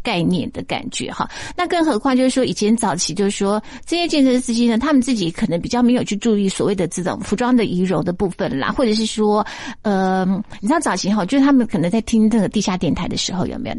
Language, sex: Chinese, female